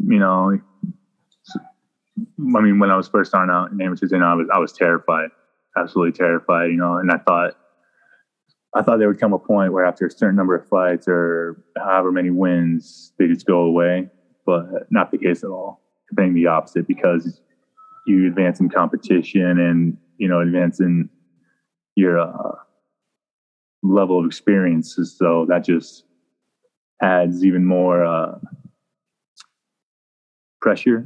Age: 20-39